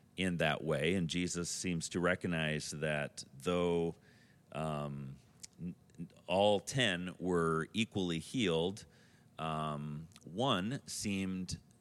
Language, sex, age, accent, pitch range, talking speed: English, male, 40-59, American, 80-100 Hz, 95 wpm